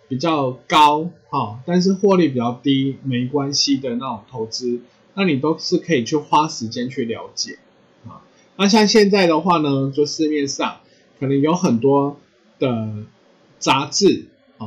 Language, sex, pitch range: Chinese, male, 125-175 Hz